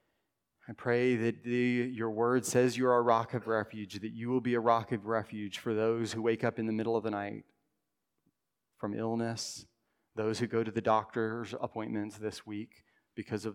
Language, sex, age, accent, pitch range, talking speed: English, male, 30-49, American, 105-115 Hz, 195 wpm